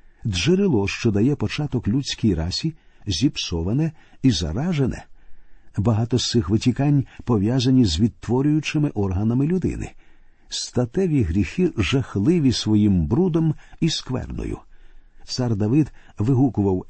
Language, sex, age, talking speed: Ukrainian, male, 50-69, 100 wpm